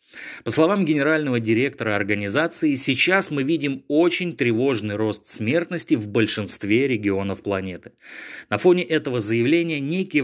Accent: native